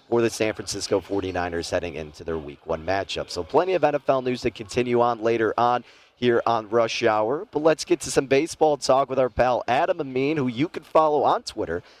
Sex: male